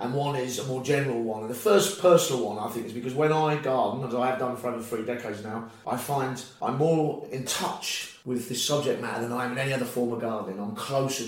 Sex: male